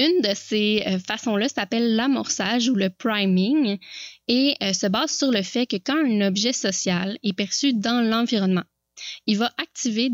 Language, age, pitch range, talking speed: French, 20-39, 195-240 Hz, 160 wpm